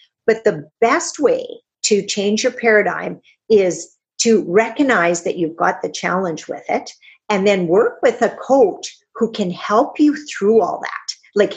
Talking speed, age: 165 wpm, 50-69